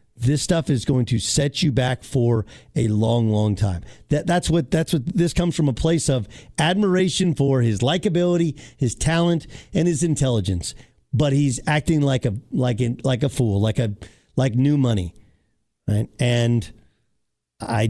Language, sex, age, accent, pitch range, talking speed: English, male, 50-69, American, 120-165 Hz, 170 wpm